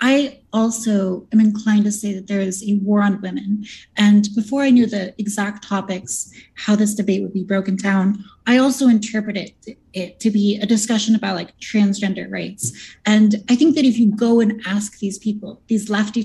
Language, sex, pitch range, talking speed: English, female, 195-225 Hz, 190 wpm